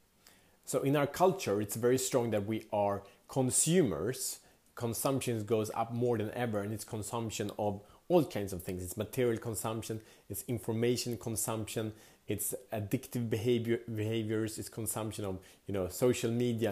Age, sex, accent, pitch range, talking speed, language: 30-49, male, Norwegian, 100-120 Hz, 150 wpm, English